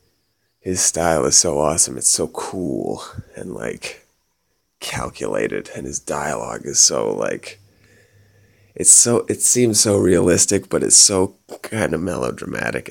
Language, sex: English, male